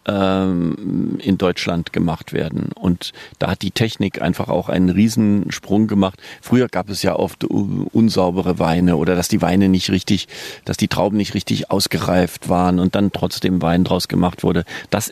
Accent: German